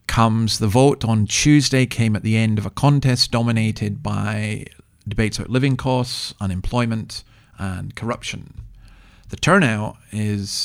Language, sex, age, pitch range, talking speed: English, male, 40-59, 100-120 Hz, 135 wpm